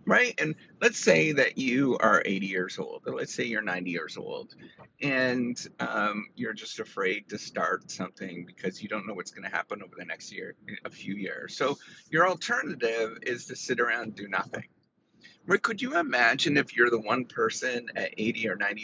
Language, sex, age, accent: English, male, 30-49, American